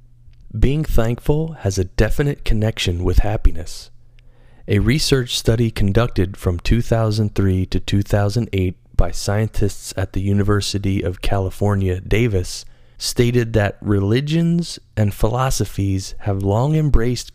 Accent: American